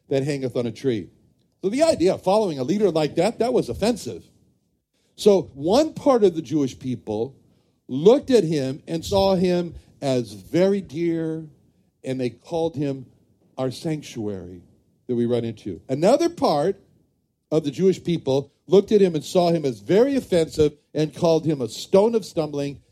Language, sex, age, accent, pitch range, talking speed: English, male, 60-79, American, 135-195 Hz, 170 wpm